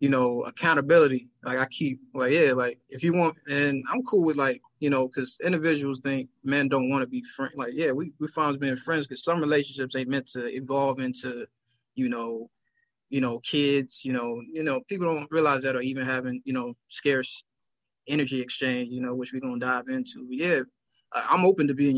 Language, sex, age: English, male, 20-39